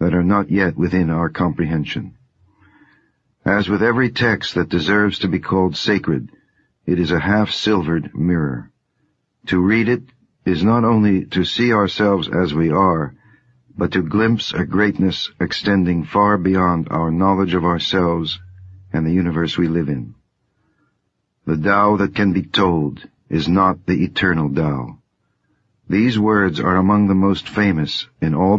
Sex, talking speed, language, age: male, 150 wpm, English, 60-79